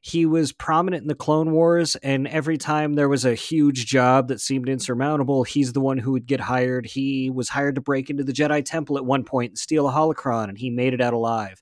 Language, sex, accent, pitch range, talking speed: English, male, American, 125-150 Hz, 245 wpm